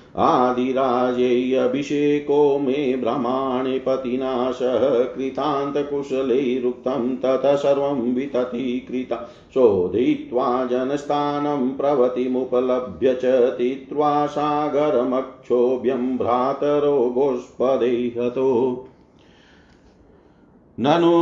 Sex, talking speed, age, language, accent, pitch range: male, 40 wpm, 50-69, Hindi, native, 125-145 Hz